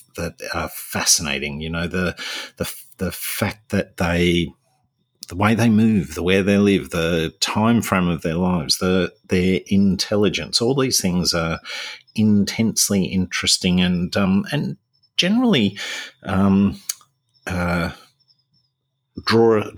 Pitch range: 85-115 Hz